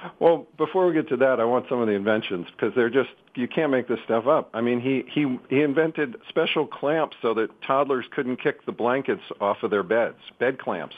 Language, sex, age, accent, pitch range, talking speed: English, male, 50-69, American, 120-155 Hz, 230 wpm